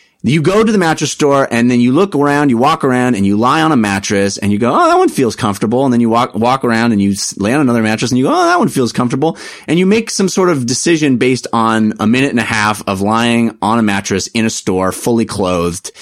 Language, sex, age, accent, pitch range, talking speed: English, male, 30-49, American, 110-160 Hz, 270 wpm